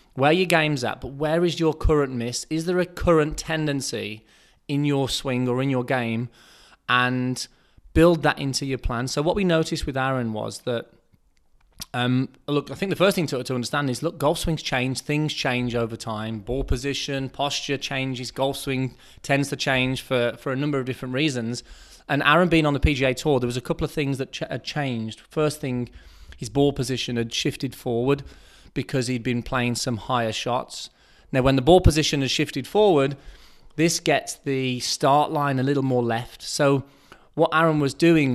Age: 20-39